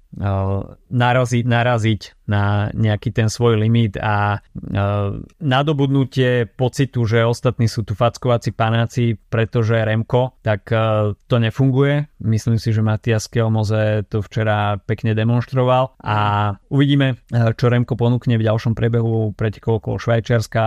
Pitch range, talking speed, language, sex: 110-125 Hz, 130 wpm, Slovak, male